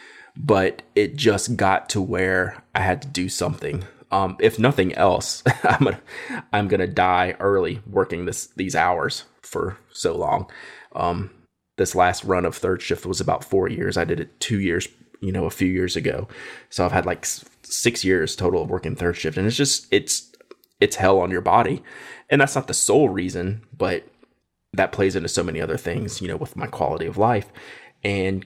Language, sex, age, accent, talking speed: English, male, 20-39, American, 200 wpm